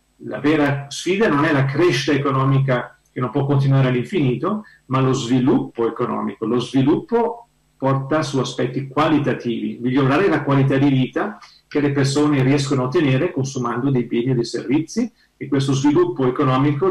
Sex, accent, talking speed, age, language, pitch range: male, native, 155 wpm, 40-59, Italian, 125-145 Hz